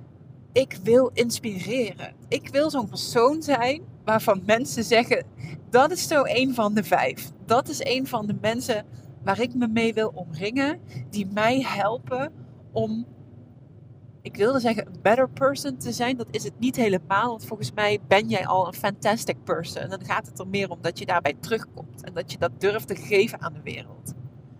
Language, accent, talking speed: Dutch, Dutch, 185 wpm